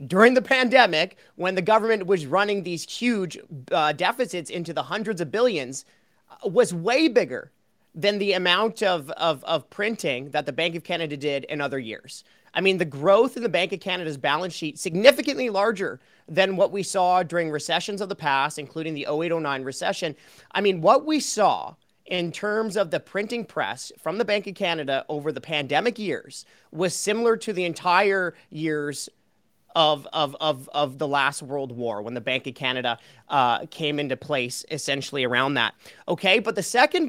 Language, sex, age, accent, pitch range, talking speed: English, male, 30-49, American, 150-210 Hz, 185 wpm